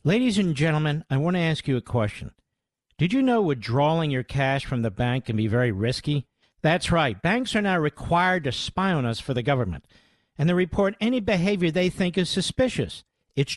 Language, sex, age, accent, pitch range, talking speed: English, male, 50-69, American, 140-195 Hz, 205 wpm